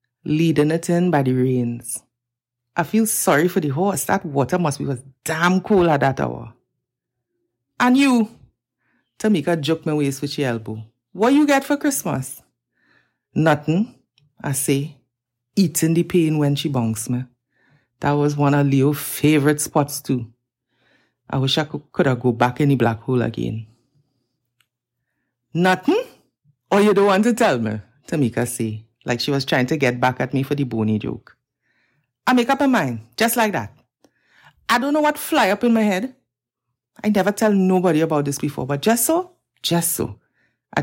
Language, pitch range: English, 125-190 Hz